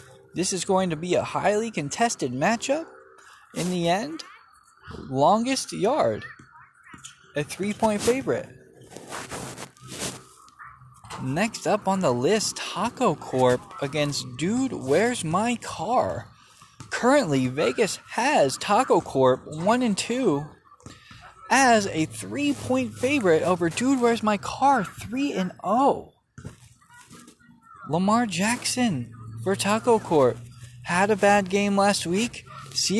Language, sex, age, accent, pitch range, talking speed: English, male, 20-39, American, 145-230 Hz, 115 wpm